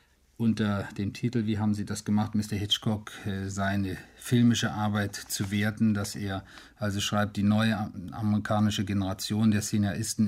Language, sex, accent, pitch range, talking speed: German, male, German, 100-110 Hz, 145 wpm